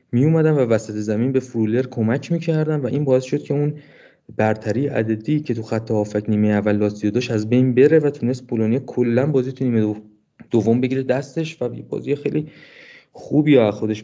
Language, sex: Persian, male